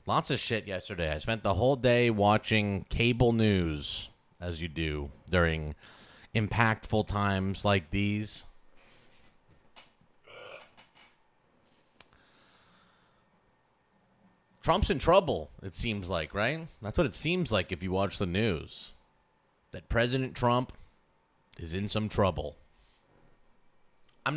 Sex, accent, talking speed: male, American, 110 wpm